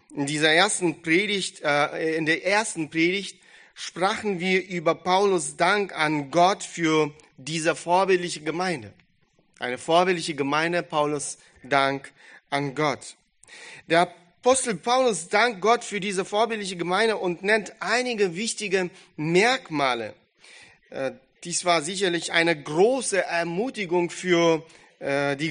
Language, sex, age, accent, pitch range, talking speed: German, male, 40-59, German, 155-205 Hz, 120 wpm